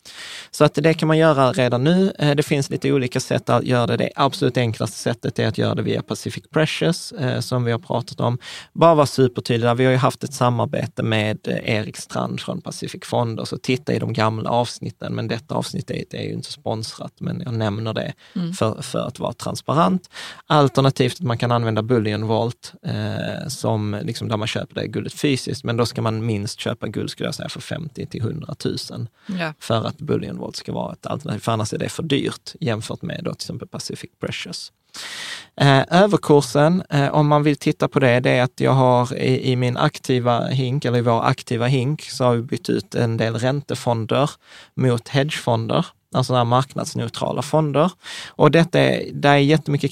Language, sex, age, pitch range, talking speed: Swedish, male, 20-39, 120-150 Hz, 195 wpm